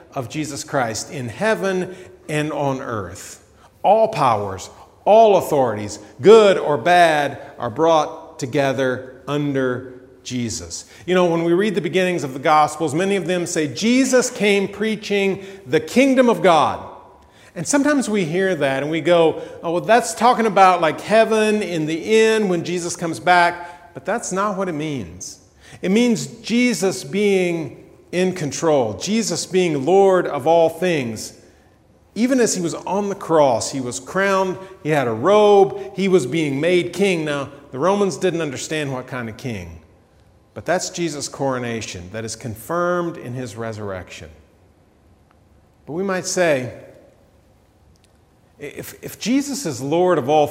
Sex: male